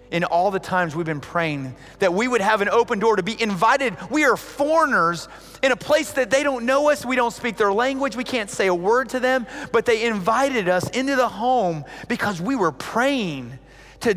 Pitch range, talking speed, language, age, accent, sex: 165-240 Hz, 220 wpm, English, 30-49, American, male